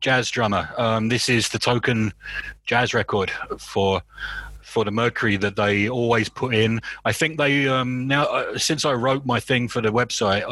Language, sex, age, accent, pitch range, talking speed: English, male, 30-49, British, 110-130 Hz, 185 wpm